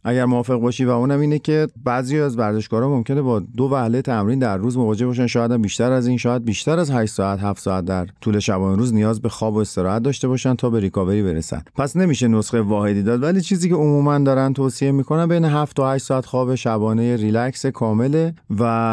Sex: male